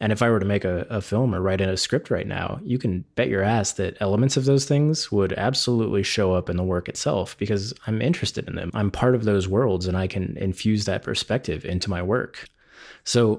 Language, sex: English, male